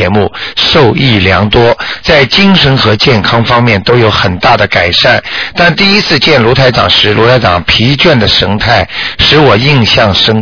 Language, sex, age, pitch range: Chinese, male, 50-69, 100-125 Hz